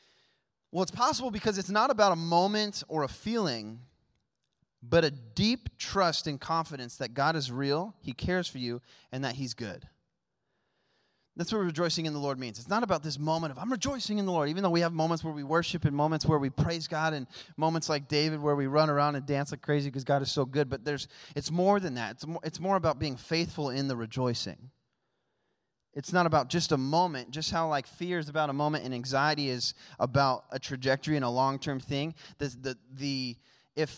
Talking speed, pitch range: 215 wpm, 130-165 Hz